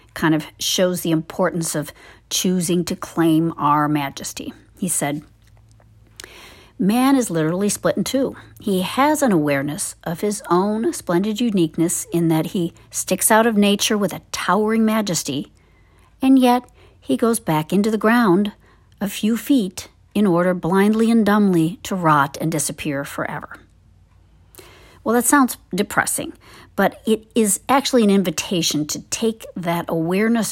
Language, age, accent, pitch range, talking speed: English, 50-69, American, 150-215 Hz, 145 wpm